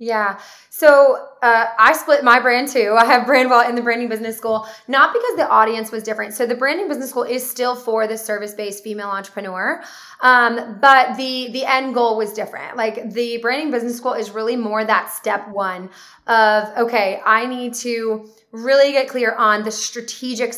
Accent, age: American, 20-39